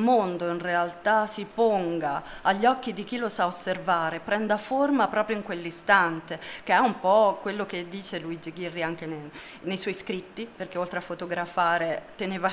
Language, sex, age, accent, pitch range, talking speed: Italian, female, 30-49, native, 170-200 Hz, 170 wpm